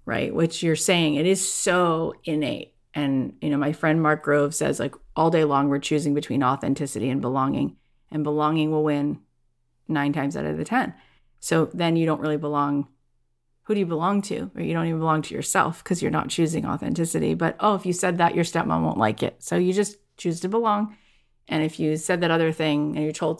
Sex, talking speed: female, 220 wpm